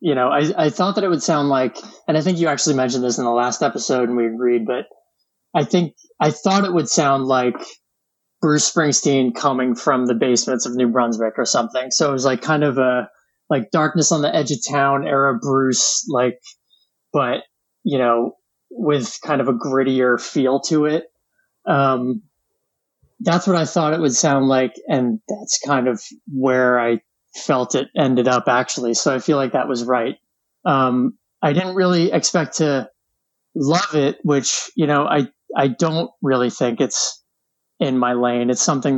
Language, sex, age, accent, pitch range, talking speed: English, male, 20-39, American, 125-155 Hz, 185 wpm